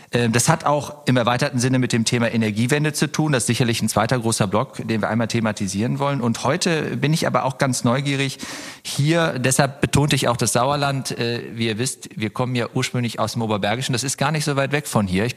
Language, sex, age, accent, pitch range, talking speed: German, male, 40-59, German, 110-140 Hz, 230 wpm